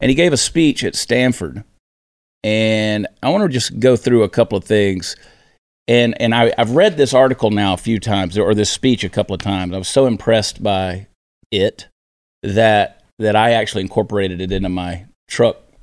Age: 40-59